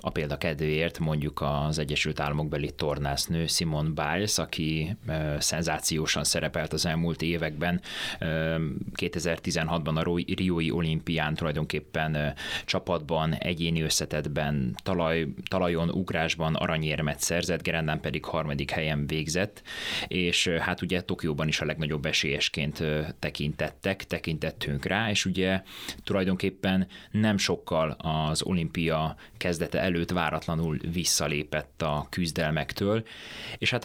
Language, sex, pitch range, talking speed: Hungarian, male, 75-90 Hz, 110 wpm